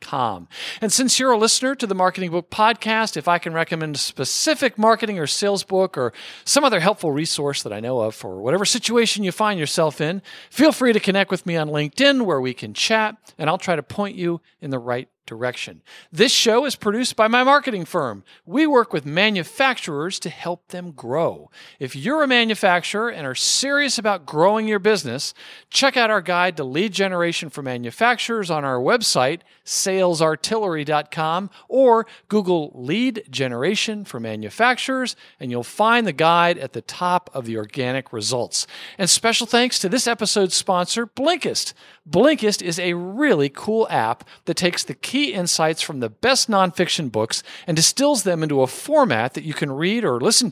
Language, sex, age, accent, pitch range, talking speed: English, male, 50-69, American, 155-230 Hz, 180 wpm